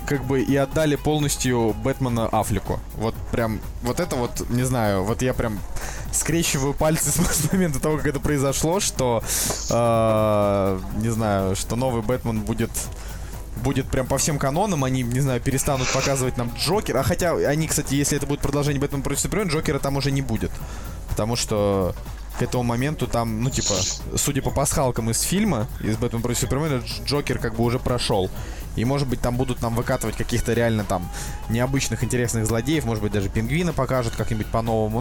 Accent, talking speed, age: native, 180 wpm, 20-39